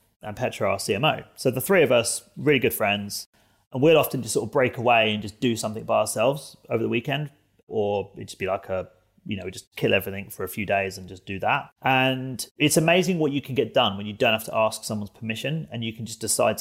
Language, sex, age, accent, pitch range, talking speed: English, male, 30-49, British, 105-130 Hz, 250 wpm